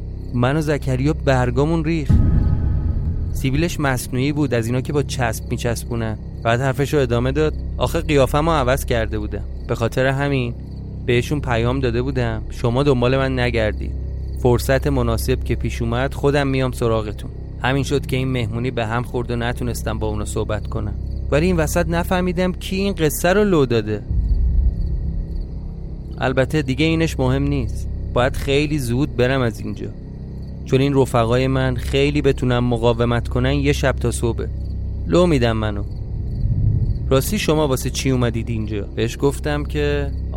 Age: 30-49